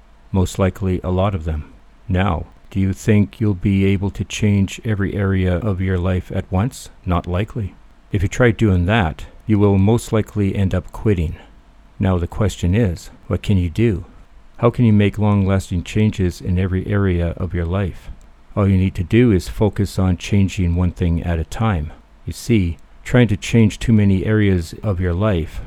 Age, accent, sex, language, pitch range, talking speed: 50-69, American, male, English, 90-105 Hz, 190 wpm